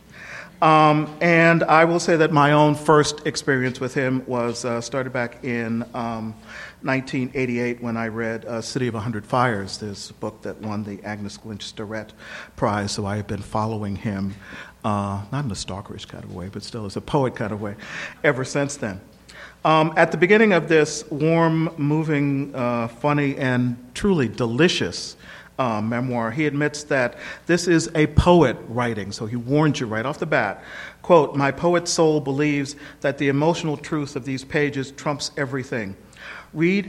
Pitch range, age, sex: 115-150 Hz, 50-69, male